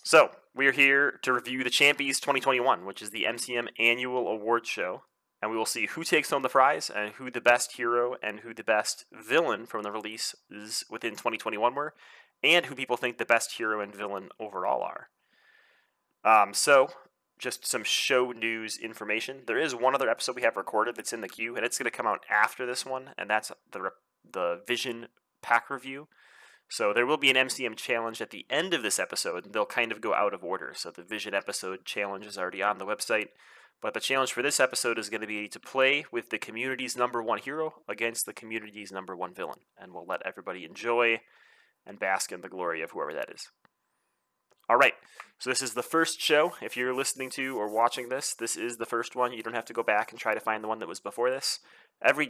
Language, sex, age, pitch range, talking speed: English, male, 30-49, 110-130 Hz, 220 wpm